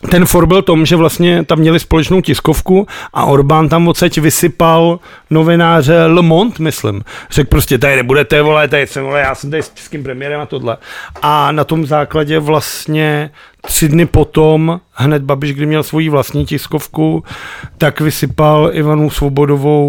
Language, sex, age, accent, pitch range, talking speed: Czech, male, 40-59, native, 145-165 Hz, 165 wpm